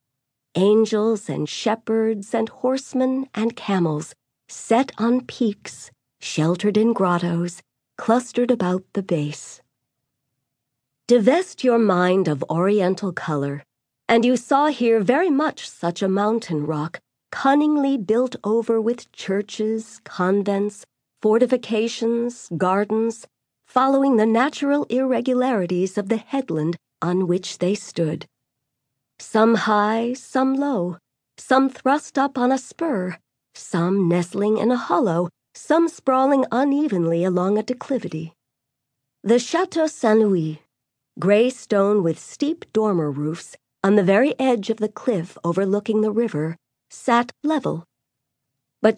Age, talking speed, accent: 40-59, 120 wpm, American